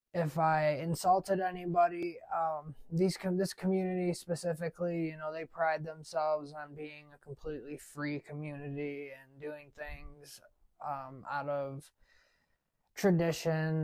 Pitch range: 145-170 Hz